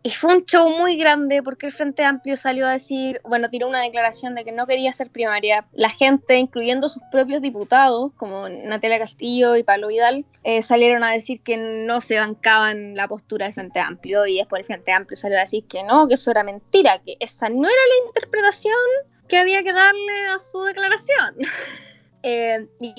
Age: 20-39